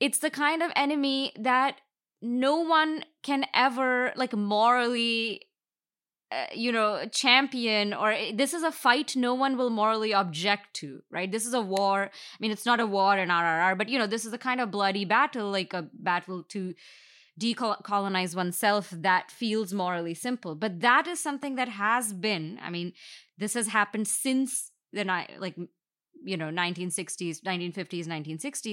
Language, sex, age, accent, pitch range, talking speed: English, female, 20-39, Indian, 180-240 Hz, 165 wpm